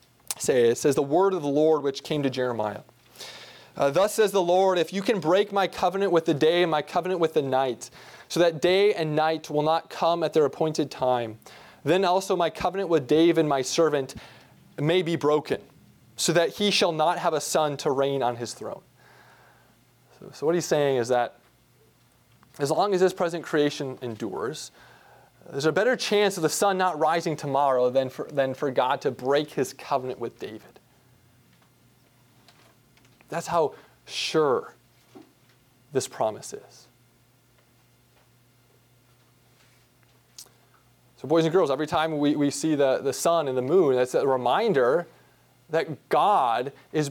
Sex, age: male, 20-39